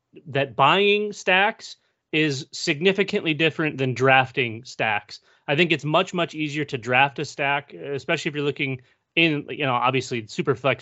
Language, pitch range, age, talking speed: English, 130-150 Hz, 30-49, 155 wpm